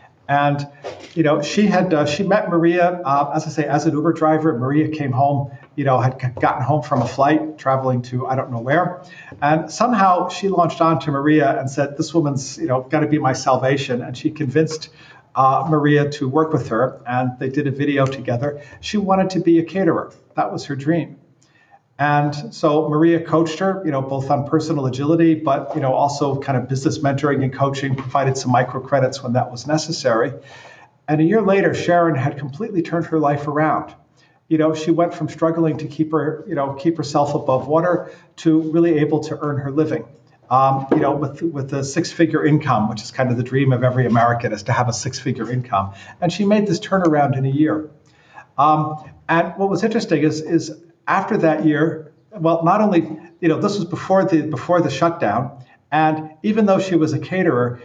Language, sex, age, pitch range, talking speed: English, male, 50-69, 135-165 Hz, 205 wpm